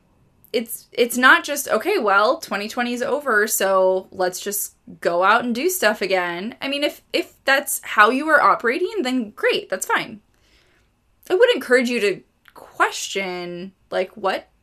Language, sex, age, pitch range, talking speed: English, female, 20-39, 185-250 Hz, 160 wpm